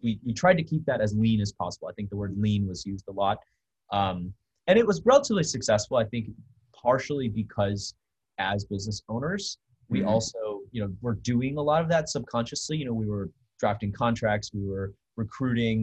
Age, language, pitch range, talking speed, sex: 30-49, English, 100-120 Hz, 195 wpm, male